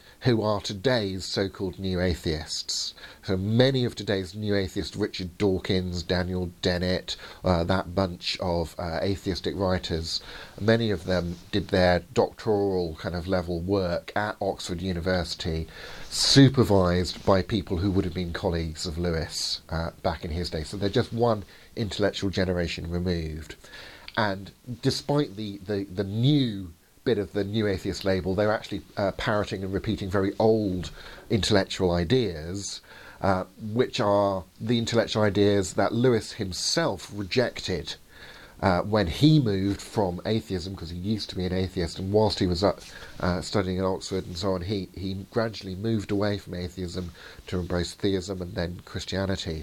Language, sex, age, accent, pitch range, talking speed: English, male, 50-69, British, 90-105 Hz, 155 wpm